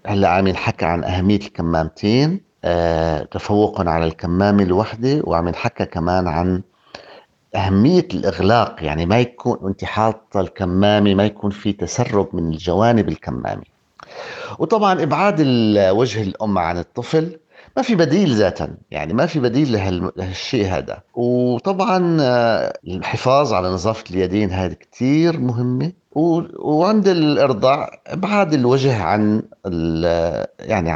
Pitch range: 95-125 Hz